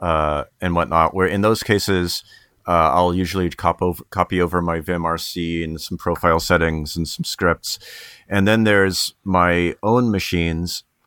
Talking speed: 155 wpm